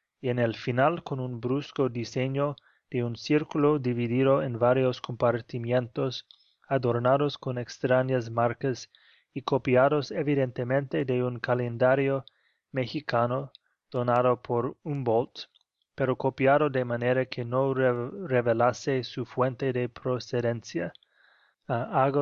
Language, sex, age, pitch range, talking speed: Spanish, male, 20-39, 120-135 Hz, 115 wpm